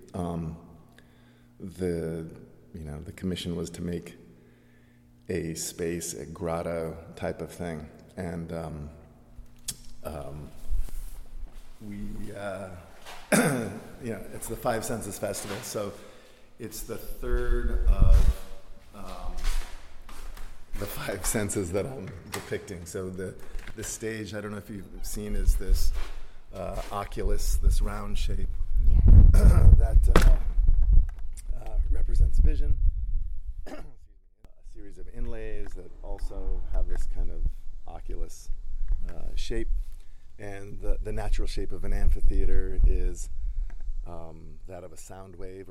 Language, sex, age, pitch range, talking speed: English, male, 50-69, 80-100 Hz, 120 wpm